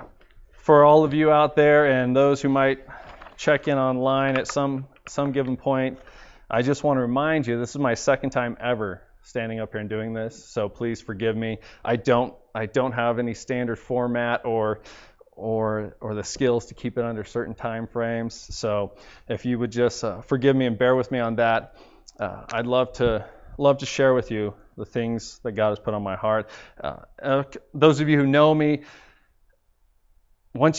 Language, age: English, 20-39